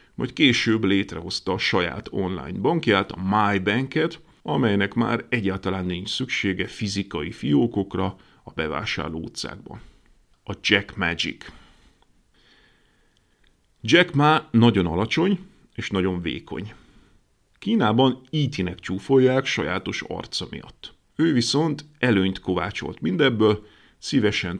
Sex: male